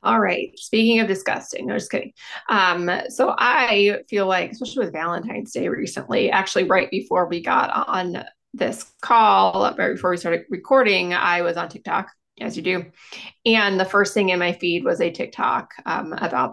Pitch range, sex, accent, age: 180-225 Hz, female, American, 20-39